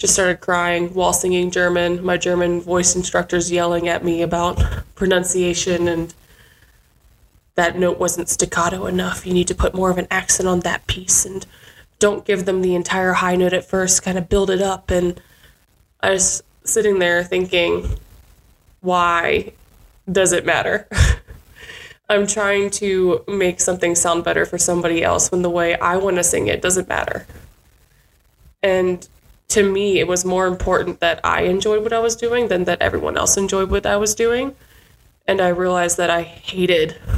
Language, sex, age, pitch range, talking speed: English, female, 20-39, 175-195 Hz, 170 wpm